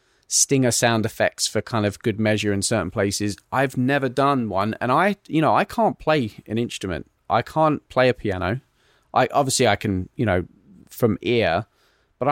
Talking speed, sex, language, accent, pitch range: 185 wpm, male, English, British, 105-135 Hz